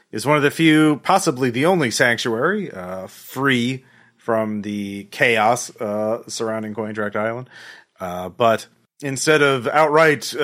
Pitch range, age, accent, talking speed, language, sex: 105-135 Hz, 30-49, American, 130 wpm, English, male